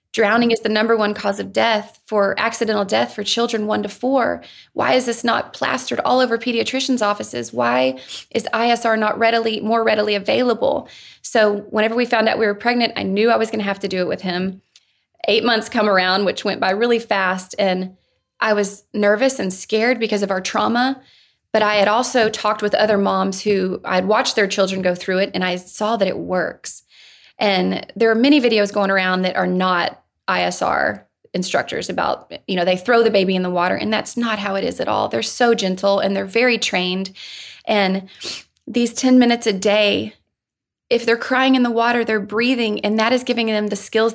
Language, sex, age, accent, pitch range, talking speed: English, female, 20-39, American, 195-230 Hz, 205 wpm